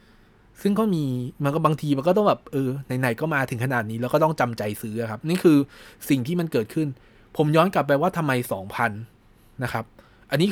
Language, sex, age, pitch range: Thai, male, 20-39, 110-155 Hz